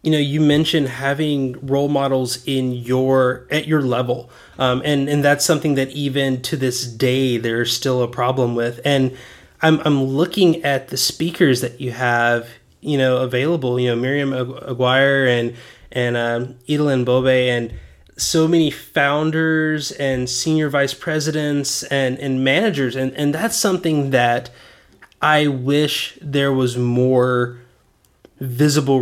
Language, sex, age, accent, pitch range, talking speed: English, male, 20-39, American, 125-155 Hz, 145 wpm